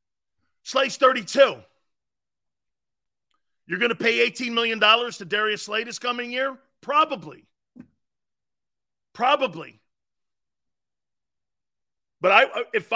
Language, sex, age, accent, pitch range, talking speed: English, male, 40-59, American, 190-270 Hz, 90 wpm